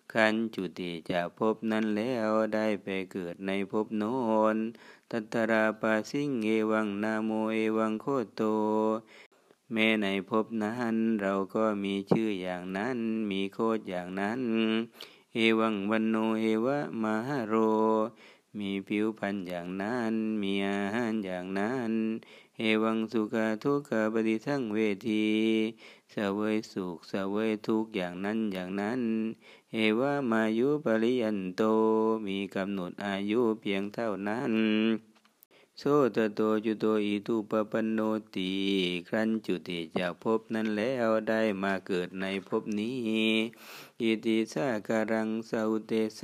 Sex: male